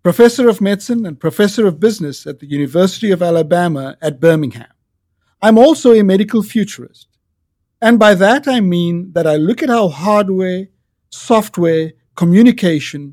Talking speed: 145 wpm